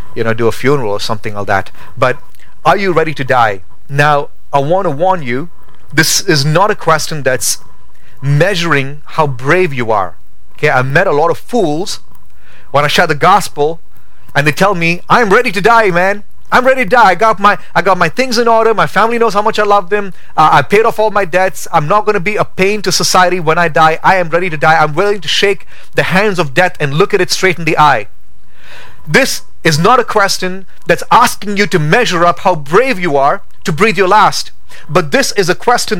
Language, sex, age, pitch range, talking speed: English, male, 30-49, 160-220 Hz, 225 wpm